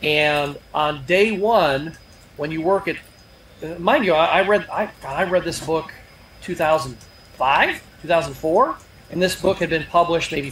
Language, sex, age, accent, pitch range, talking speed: English, male, 40-59, American, 155-210 Hz, 160 wpm